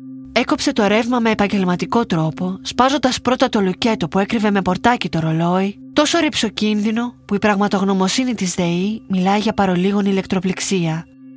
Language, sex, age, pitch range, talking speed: Greek, female, 20-39, 175-230 Hz, 150 wpm